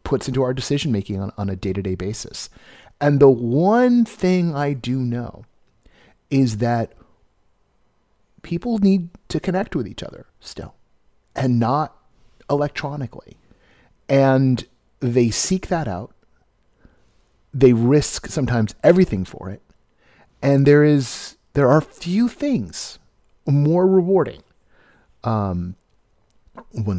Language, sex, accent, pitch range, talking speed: English, male, American, 100-145 Hz, 115 wpm